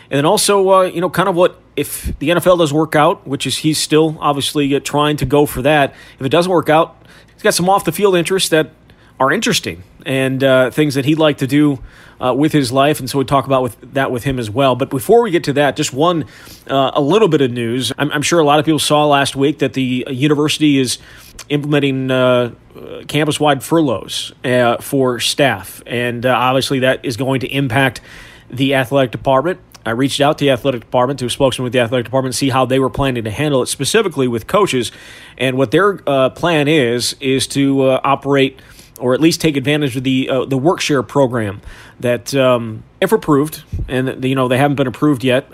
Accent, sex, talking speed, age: American, male, 225 wpm, 30-49